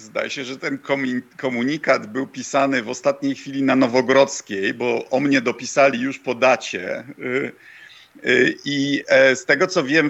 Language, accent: Polish, native